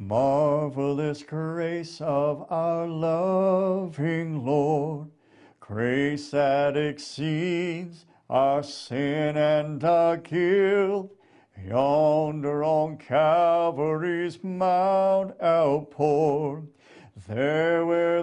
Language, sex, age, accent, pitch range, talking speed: English, male, 50-69, American, 145-185 Hz, 70 wpm